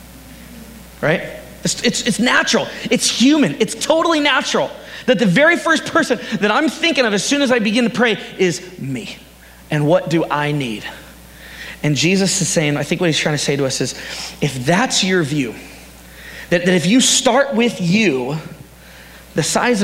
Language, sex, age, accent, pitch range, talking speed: English, male, 30-49, American, 165-245 Hz, 180 wpm